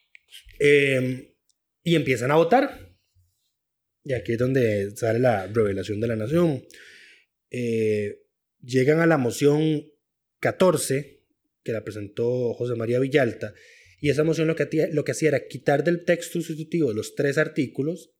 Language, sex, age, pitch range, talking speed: Spanish, male, 20-39, 120-175 Hz, 140 wpm